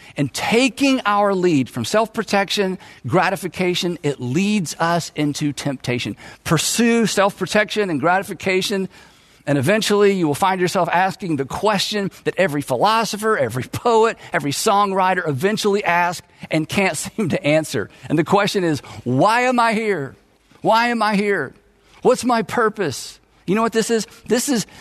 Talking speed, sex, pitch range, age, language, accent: 145 wpm, male, 155-210 Hz, 50-69, English, American